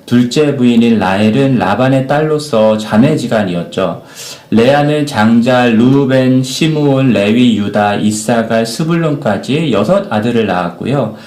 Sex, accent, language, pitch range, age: male, native, Korean, 110-145 Hz, 40-59